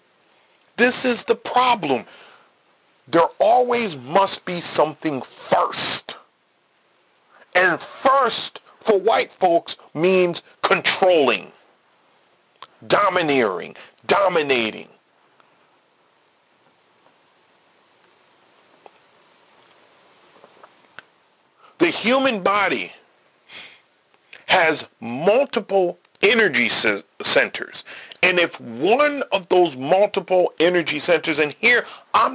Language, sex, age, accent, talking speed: English, male, 40-59, American, 70 wpm